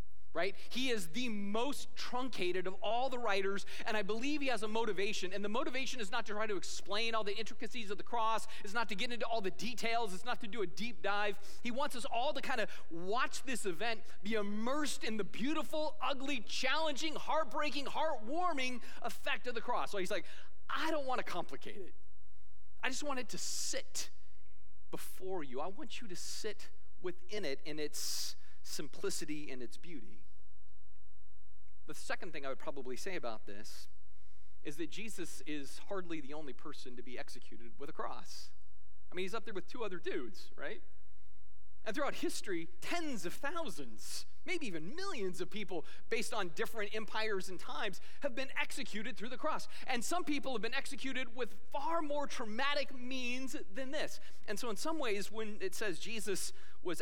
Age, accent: 30-49, American